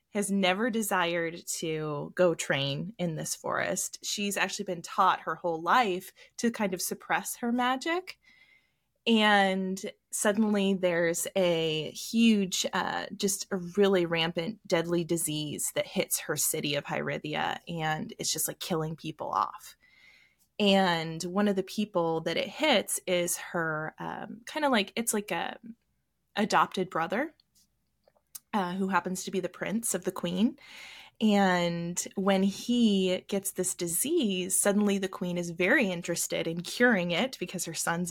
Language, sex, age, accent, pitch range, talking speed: English, female, 20-39, American, 175-210 Hz, 145 wpm